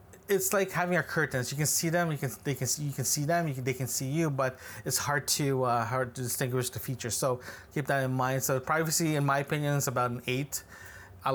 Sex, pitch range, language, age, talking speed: male, 125-160 Hz, English, 20-39, 260 wpm